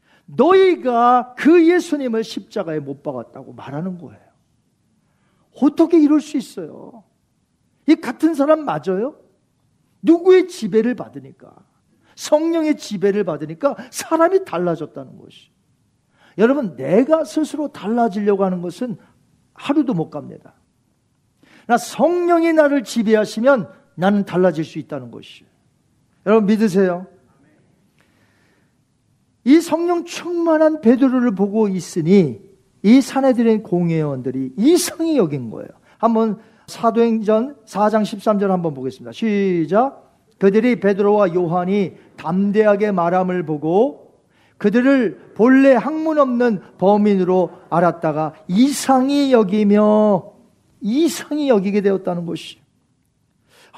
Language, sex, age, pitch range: Korean, male, 40-59, 185-290 Hz